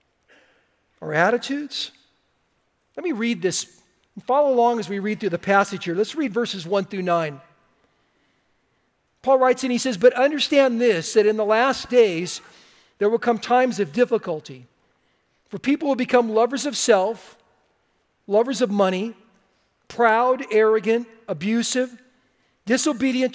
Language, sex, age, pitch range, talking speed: English, male, 50-69, 200-255 Hz, 135 wpm